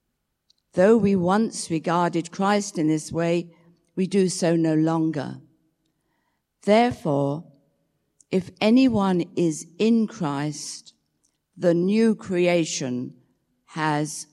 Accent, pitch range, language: British, 160-195 Hz, English